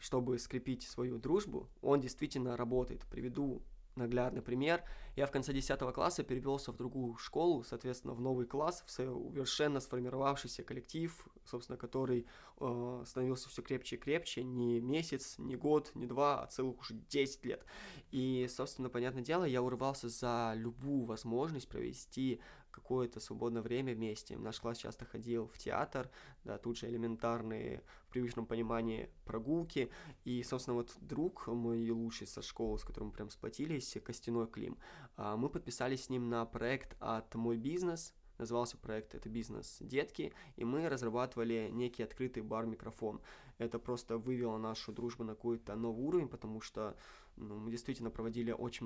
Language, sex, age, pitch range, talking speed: Russian, male, 20-39, 115-130 Hz, 150 wpm